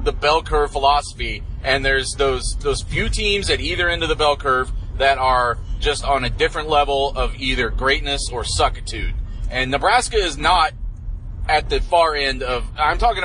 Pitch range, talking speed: 120-150 Hz, 180 wpm